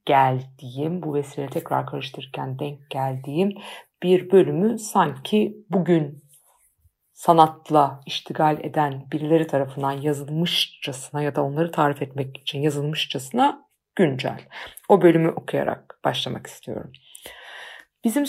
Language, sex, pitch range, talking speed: Turkish, female, 150-205 Hz, 100 wpm